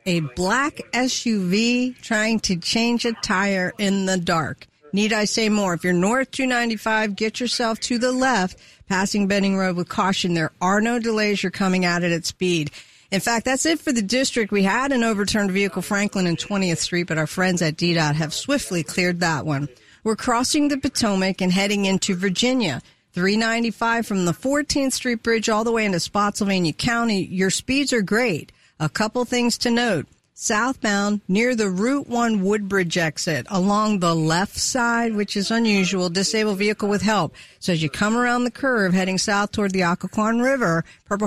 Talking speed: 185 wpm